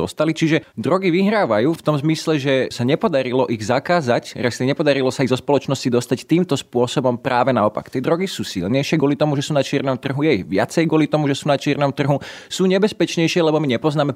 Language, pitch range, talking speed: Slovak, 120-150 Hz, 205 wpm